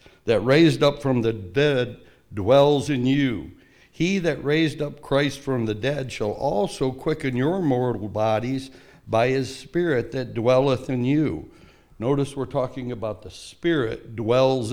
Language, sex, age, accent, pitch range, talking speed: English, male, 60-79, American, 125-160 Hz, 150 wpm